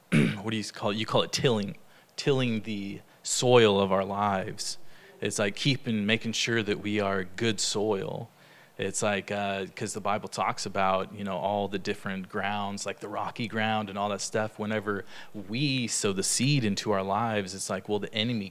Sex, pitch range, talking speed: male, 100-115 Hz, 195 wpm